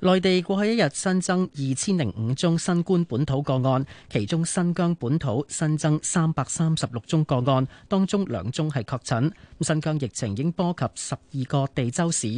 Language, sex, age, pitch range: Chinese, male, 30-49, 120-165 Hz